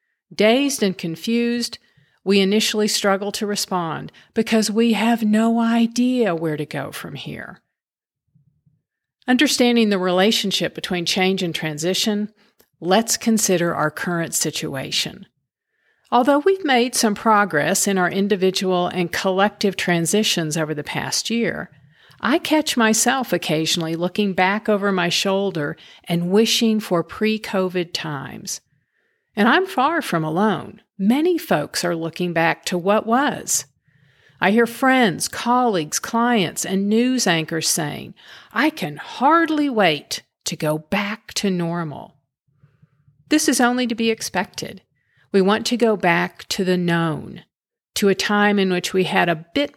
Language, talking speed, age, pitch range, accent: English, 135 wpm, 50-69, 175-230 Hz, American